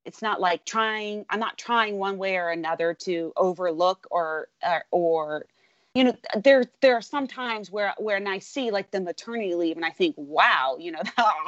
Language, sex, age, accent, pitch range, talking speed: English, female, 30-49, American, 185-290 Hz, 200 wpm